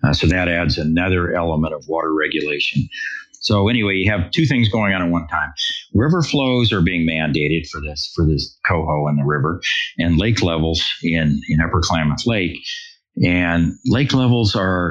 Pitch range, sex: 80-105 Hz, male